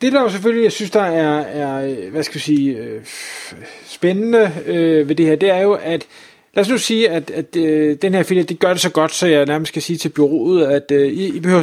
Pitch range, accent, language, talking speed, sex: 150-195 Hz, native, Danish, 250 wpm, male